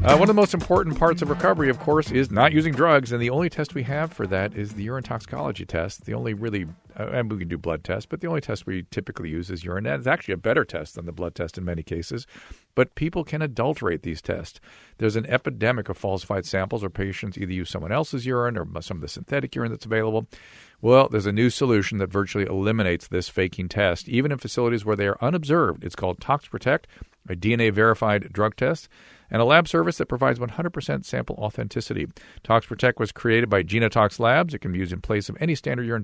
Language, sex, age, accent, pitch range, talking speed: English, male, 50-69, American, 95-135 Hz, 230 wpm